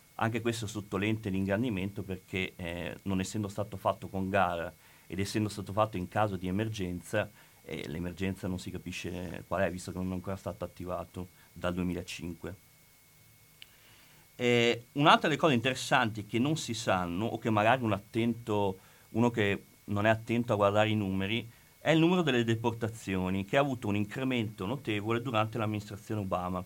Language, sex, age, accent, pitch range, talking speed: Italian, male, 40-59, native, 95-125 Hz, 160 wpm